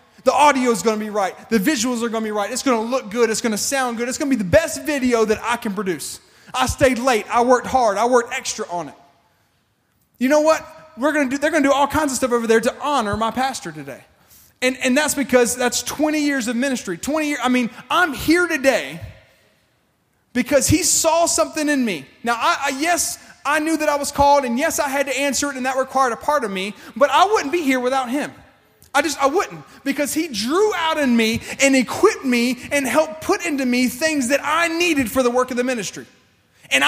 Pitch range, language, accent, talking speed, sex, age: 225-295 Hz, English, American, 245 wpm, male, 30-49